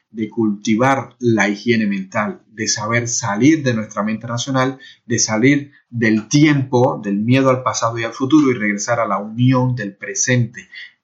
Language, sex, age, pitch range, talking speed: Spanish, male, 30-49, 115-135 Hz, 165 wpm